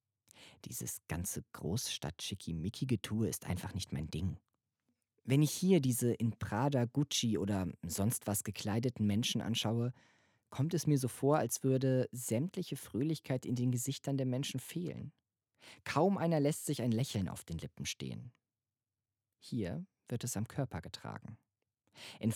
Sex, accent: male, German